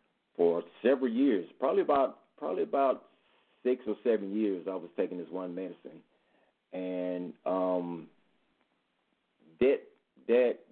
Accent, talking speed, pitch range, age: American, 120 wpm, 90-100 Hz, 40-59